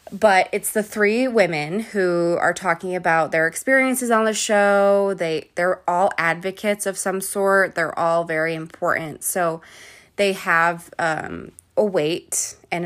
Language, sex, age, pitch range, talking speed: English, female, 20-39, 170-205 Hz, 155 wpm